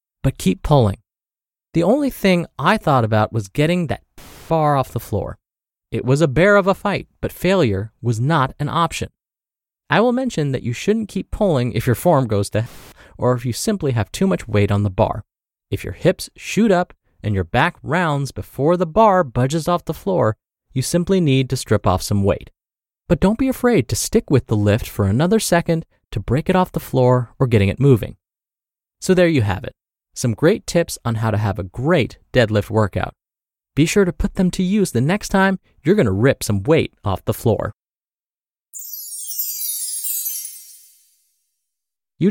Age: 30-49